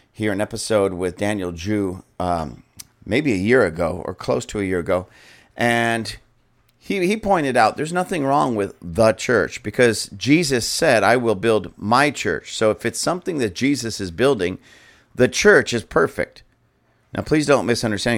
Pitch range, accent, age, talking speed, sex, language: 100-130 Hz, American, 50-69, 170 wpm, male, English